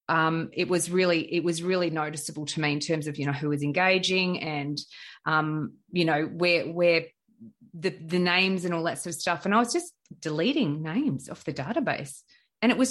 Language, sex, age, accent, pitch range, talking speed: English, female, 30-49, Australian, 165-255 Hz, 210 wpm